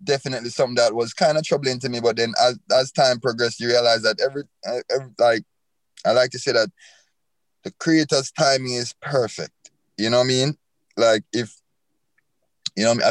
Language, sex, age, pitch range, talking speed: English, male, 20-39, 90-130 Hz, 190 wpm